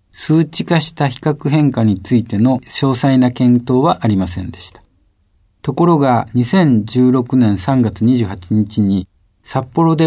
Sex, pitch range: male, 95-130 Hz